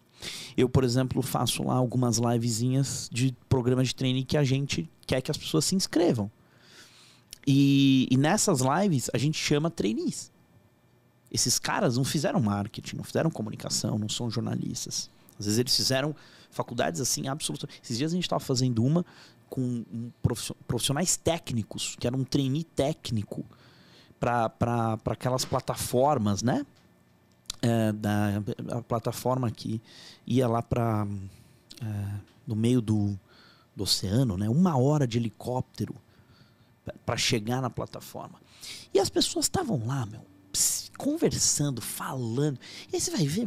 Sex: male